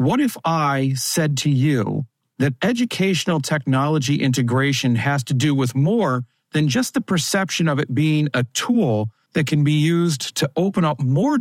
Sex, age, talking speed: male, 40-59, 170 wpm